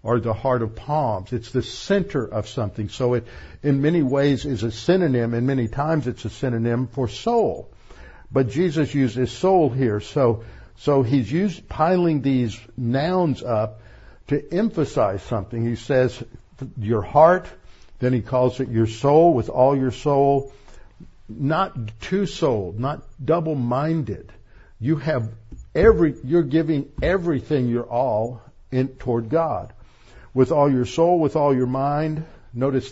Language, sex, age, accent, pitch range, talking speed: English, male, 60-79, American, 120-155 Hz, 150 wpm